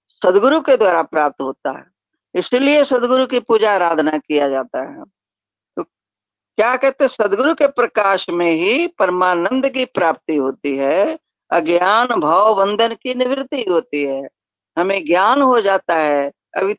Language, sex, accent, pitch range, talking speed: Hindi, female, native, 160-235 Hz, 145 wpm